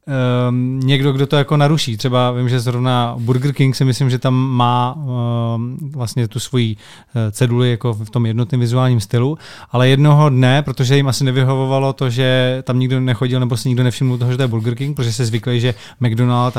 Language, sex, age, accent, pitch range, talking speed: Czech, male, 30-49, native, 115-130 Hz, 200 wpm